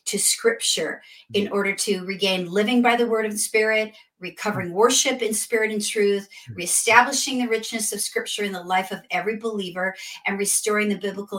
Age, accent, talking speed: 50-69, American, 180 wpm